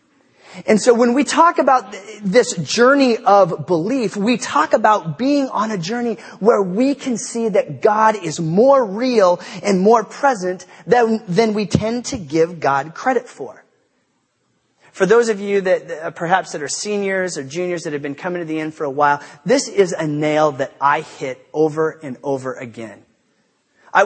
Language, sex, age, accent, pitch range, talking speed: English, male, 30-49, American, 150-210 Hz, 180 wpm